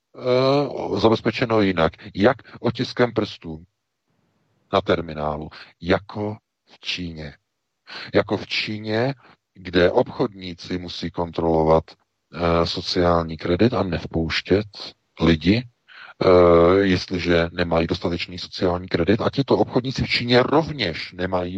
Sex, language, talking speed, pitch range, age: male, Czech, 100 wpm, 85-105 Hz, 50-69